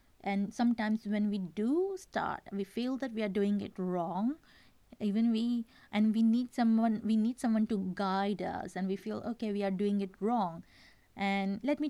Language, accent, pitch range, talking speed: English, Indian, 195-240 Hz, 190 wpm